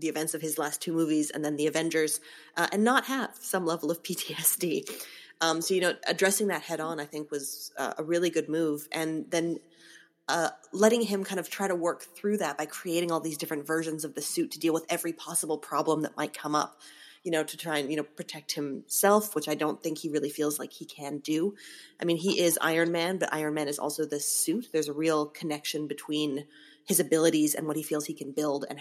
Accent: American